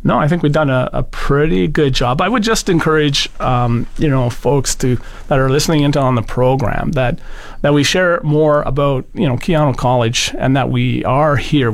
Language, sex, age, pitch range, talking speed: English, male, 40-59, 120-145 Hz, 210 wpm